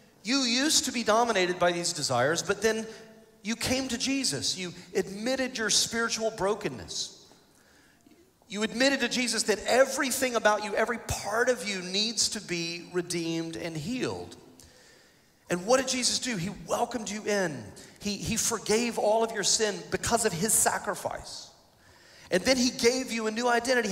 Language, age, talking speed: English, 40-59, 165 wpm